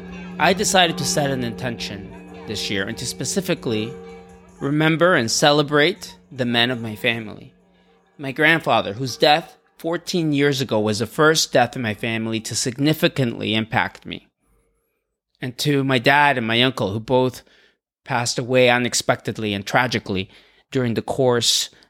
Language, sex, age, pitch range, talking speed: English, male, 30-49, 115-145 Hz, 150 wpm